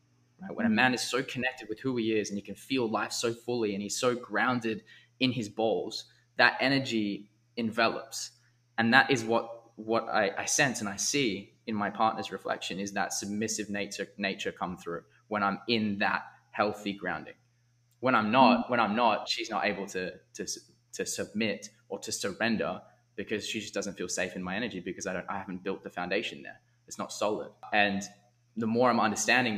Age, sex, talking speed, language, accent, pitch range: 20-39, male, 195 wpm, English, Australian, 100-120 Hz